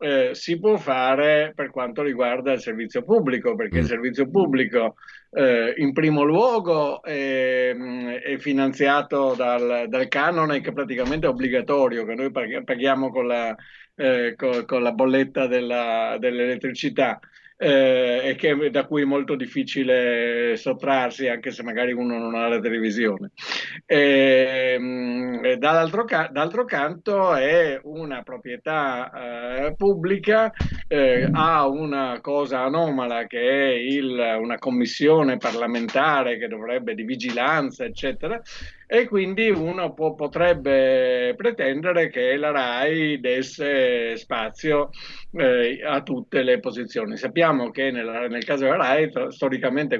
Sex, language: male, Italian